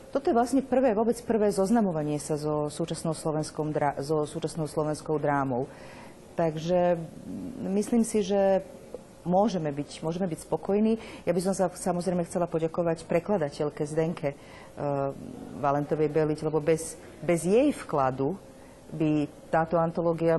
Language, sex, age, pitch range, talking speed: Slovak, female, 40-59, 150-180 Hz, 130 wpm